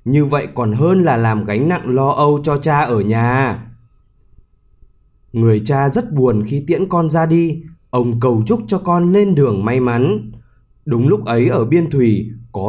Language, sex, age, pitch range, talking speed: Vietnamese, male, 20-39, 115-175 Hz, 185 wpm